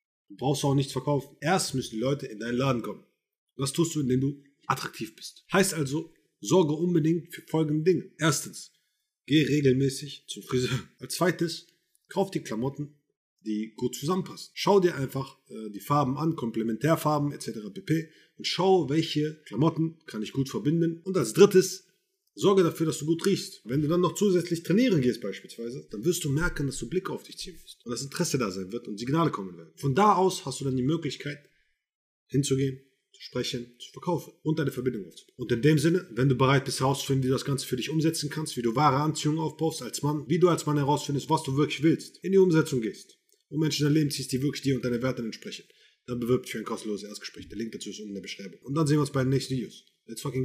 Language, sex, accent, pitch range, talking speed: German, male, German, 130-165 Hz, 225 wpm